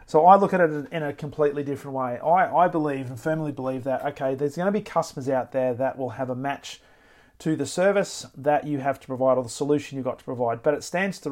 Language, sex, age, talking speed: English, male, 40-59, 260 wpm